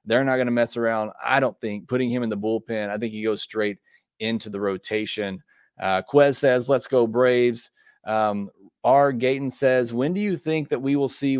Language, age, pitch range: English, 30-49, 110-145 Hz